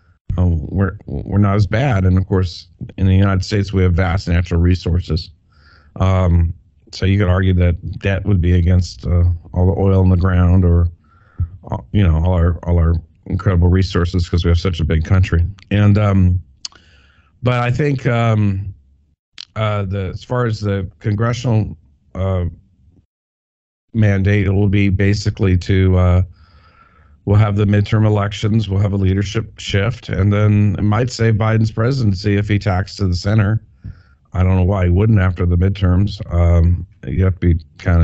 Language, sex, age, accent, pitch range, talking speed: English, male, 50-69, American, 90-105 Hz, 175 wpm